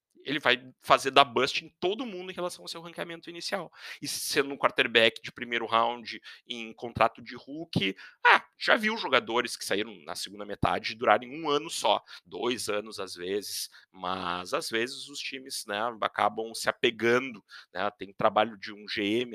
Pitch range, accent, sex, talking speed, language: 105-160 Hz, Brazilian, male, 175 wpm, Portuguese